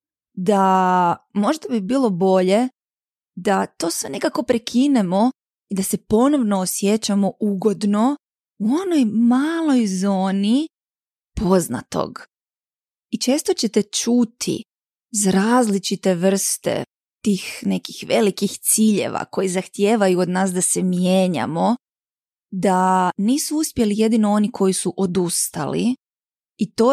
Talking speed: 110 wpm